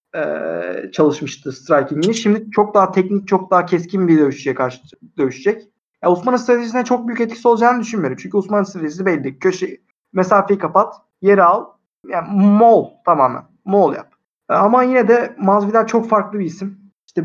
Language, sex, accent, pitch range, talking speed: Turkish, male, native, 165-200 Hz, 155 wpm